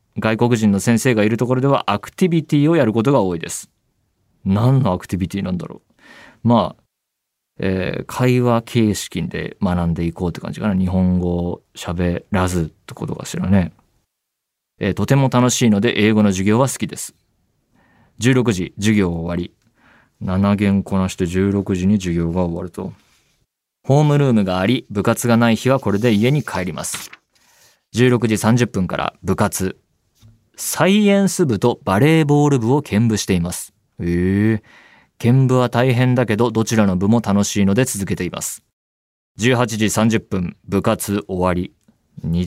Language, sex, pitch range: Japanese, male, 95-120 Hz